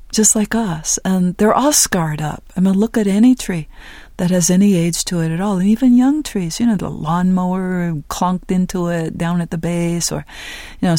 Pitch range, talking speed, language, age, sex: 165-195 Hz, 220 wpm, English, 40-59, female